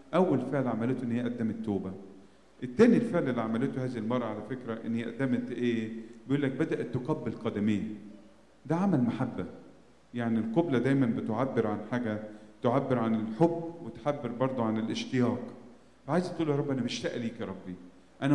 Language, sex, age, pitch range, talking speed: English, male, 40-59, 115-135 Hz, 155 wpm